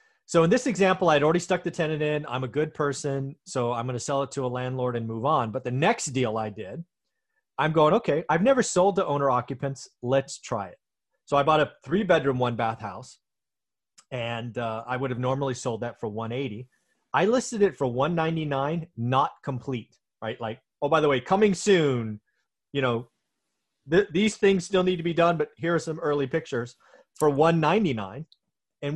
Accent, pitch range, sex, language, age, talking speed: American, 125-165 Hz, male, English, 30-49, 200 wpm